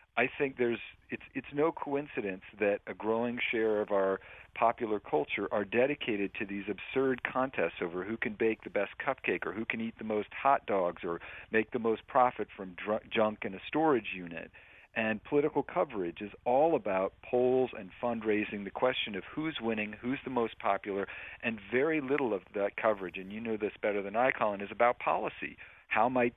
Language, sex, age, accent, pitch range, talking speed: English, male, 50-69, American, 100-130 Hz, 200 wpm